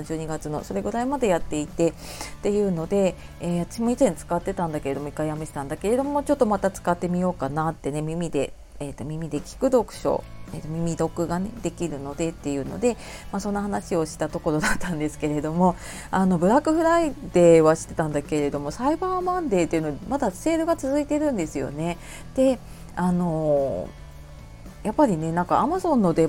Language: Japanese